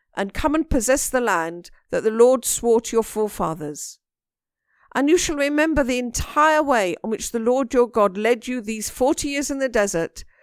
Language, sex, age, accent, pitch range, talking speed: English, female, 50-69, British, 230-300 Hz, 195 wpm